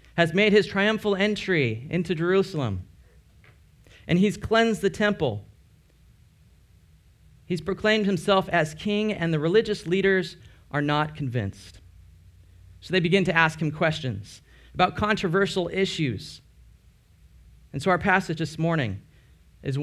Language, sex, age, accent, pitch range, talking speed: English, male, 40-59, American, 120-185 Hz, 125 wpm